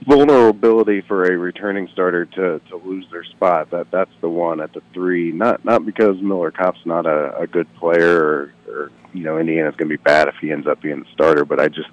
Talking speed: 220 wpm